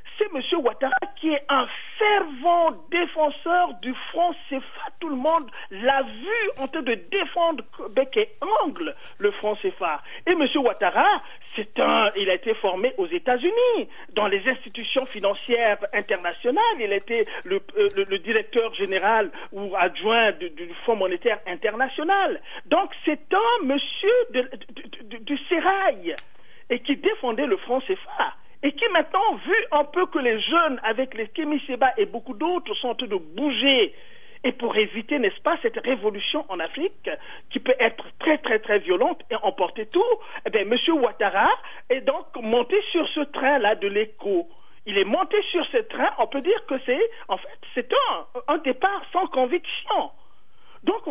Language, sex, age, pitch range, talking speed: French, male, 50-69, 235-375 Hz, 170 wpm